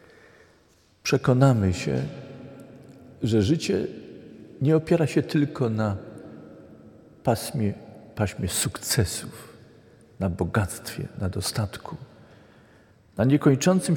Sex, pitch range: male, 110-155 Hz